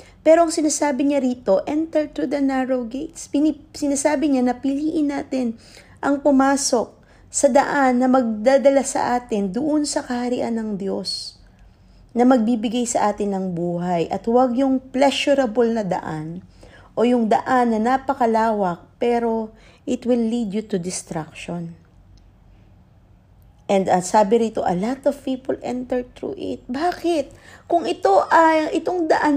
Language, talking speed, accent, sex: English, 140 wpm, Filipino, female